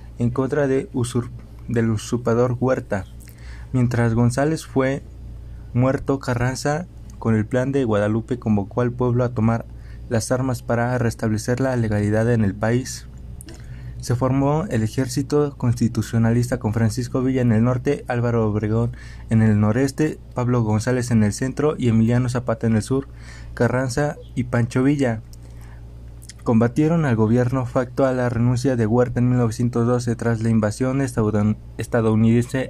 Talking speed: 140 wpm